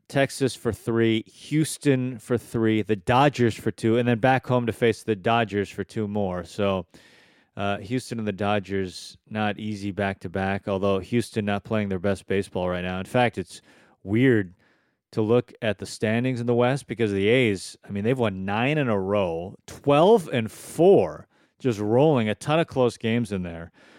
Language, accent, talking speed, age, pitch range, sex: English, American, 185 wpm, 30-49, 105-130 Hz, male